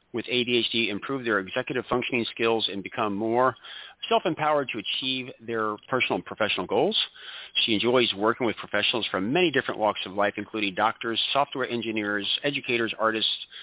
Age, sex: 50-69, male